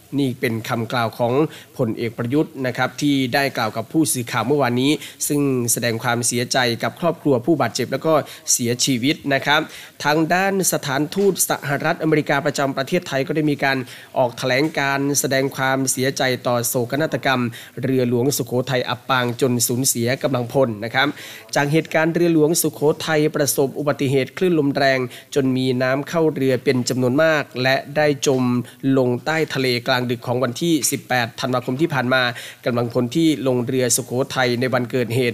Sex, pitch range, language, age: male, 125-150 Hz, Thai, 20-39